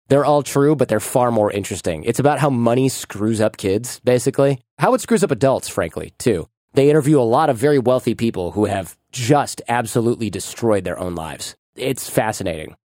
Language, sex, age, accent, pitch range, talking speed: English, male, 30-49, American, 110-145 Hz, 190 wpm